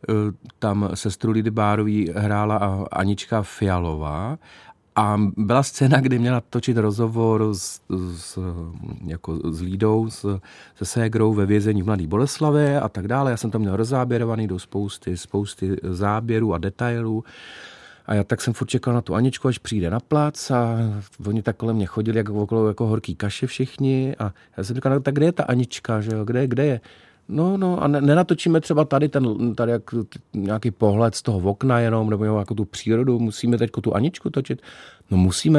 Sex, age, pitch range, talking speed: male, 40-59, 100-120 Hz, 180 wpm